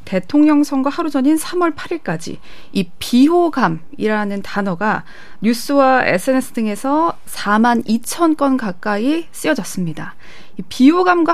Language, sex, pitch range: Korean, female, 205-290 Hz